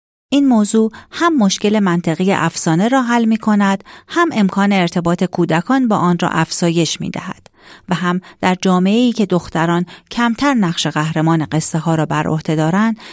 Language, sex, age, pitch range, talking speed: Persian, female, 40-59, 170-225 Hz, 165 wpm